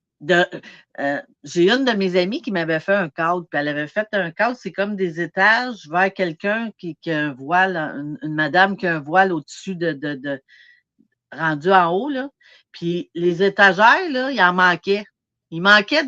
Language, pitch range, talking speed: French, 165-220 Hz, 200 wpm